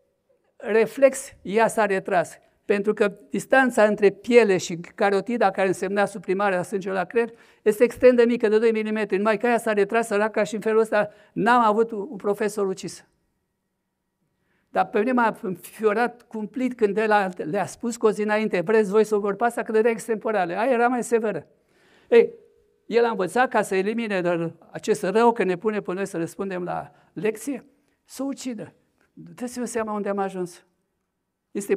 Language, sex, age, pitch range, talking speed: Romanian, male, 60-79, 190-235 Hz, 180 wpm